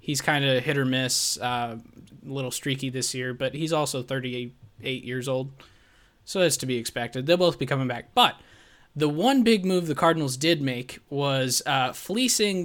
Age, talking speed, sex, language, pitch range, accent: 20-39, 190 wpm, male, English, 130-165 Hz, American